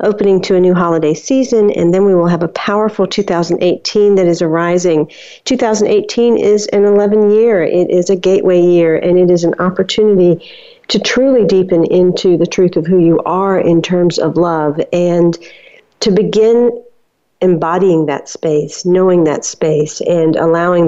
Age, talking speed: 50-69, 160 wpm